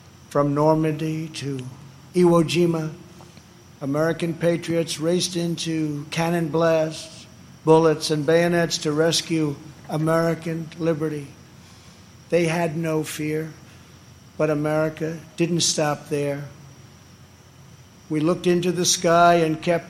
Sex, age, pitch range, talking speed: male, 60-79, 140-165 Hz, 105 wpm